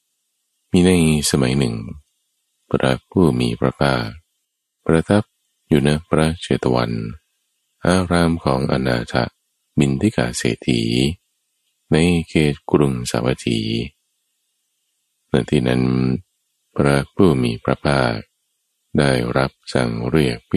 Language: Thai